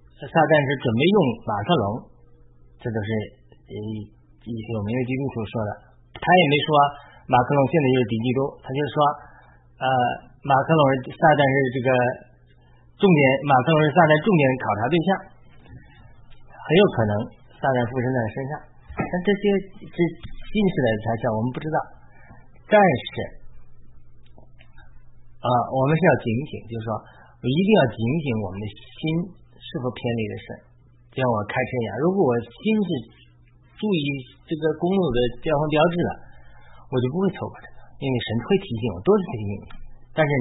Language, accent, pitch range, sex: Chinese, native, 115-155 Hz, male